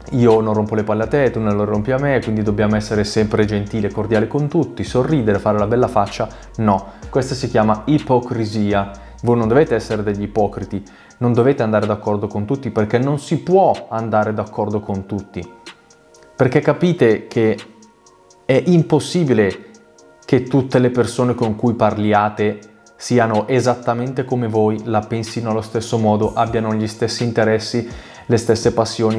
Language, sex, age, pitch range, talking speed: Italian, male, 20-39, 105-125 Hz, 165 wpm